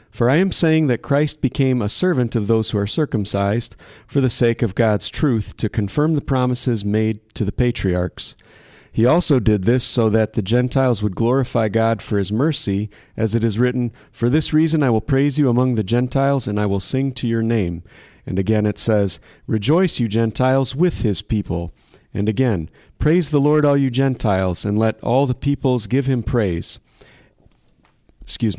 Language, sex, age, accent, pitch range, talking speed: English, male, 40-59, American, 105-135 Hz, 190 wpm